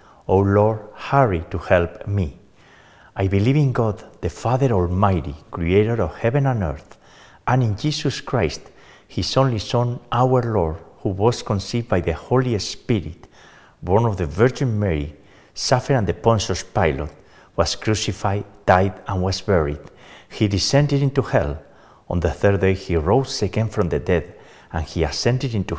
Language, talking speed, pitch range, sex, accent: English, 160 wpm, 90-120 Hz, male, Spanish